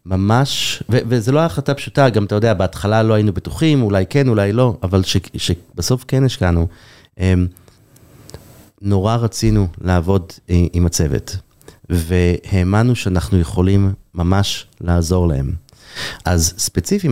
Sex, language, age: male, Hebrew, 30-49